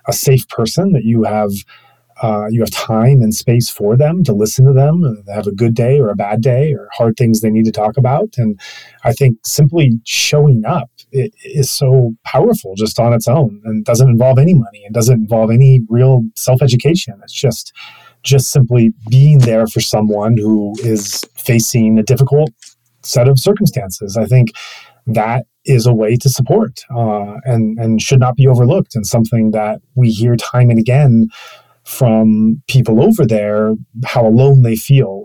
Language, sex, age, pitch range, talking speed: English, male, 30-49, 110-135 Hz, 185 wpm